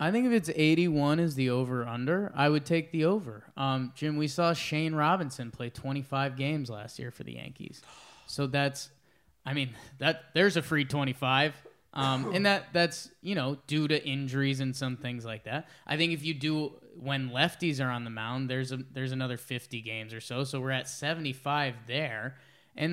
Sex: male